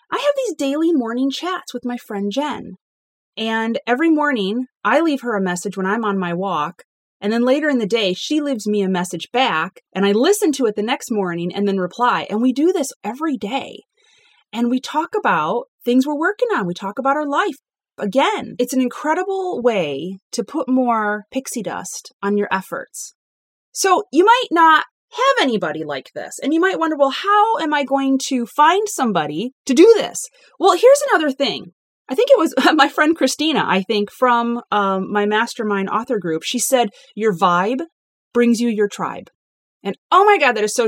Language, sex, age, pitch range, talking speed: English, female, 30-49, 205-310 Hz, 200 wpm